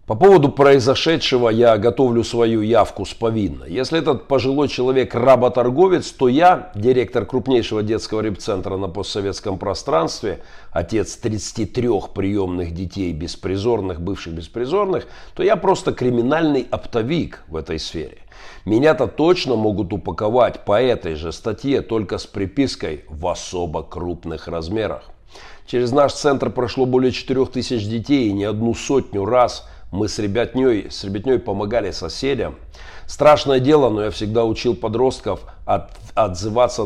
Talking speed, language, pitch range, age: 130 wpm, Russian, 95-130 Hz, 50-69